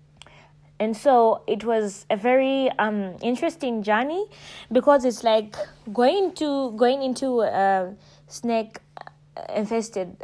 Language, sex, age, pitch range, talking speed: English, female, 20-39, 175-225 Hz, 110 wpm